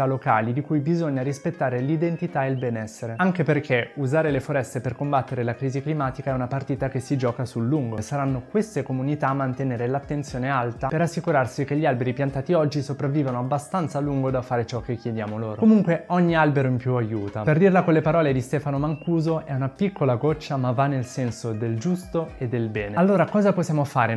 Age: 20-39